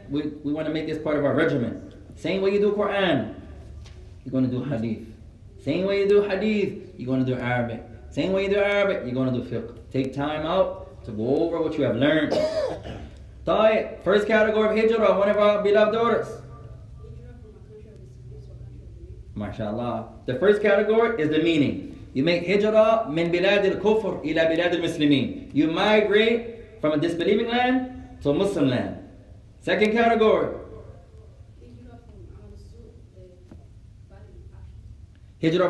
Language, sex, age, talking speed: English, male, 20-39, 150 wpm